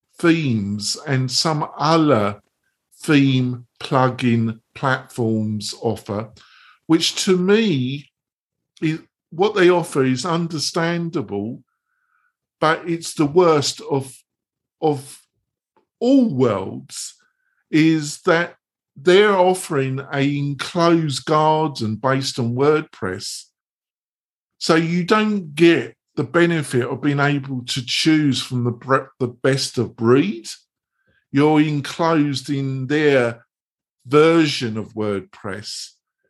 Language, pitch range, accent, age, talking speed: English, 130-165 Hz, British, 50-69, 95 wpm